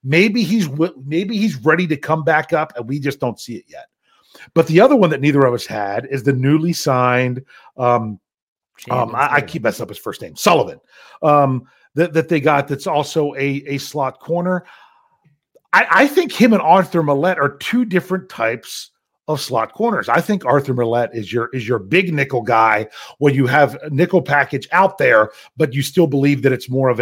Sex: male